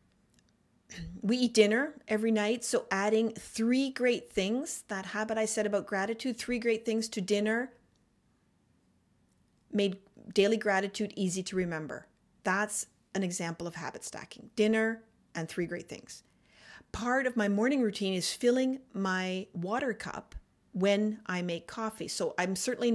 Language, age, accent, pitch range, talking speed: English, 40-59, American, 180-225 Hz, 145 wpm